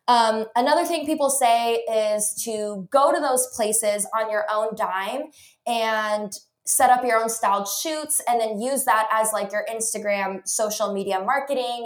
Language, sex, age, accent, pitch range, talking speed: English, female, 20-39, American, 210-285 Hz, 165 wpm